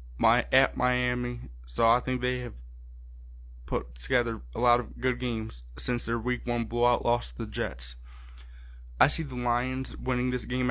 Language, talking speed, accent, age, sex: English, 175 wpm, American, 20-39, male